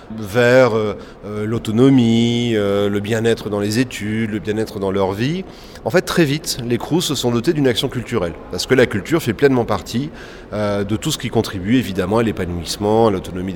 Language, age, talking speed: French, 30-49, 180 wpm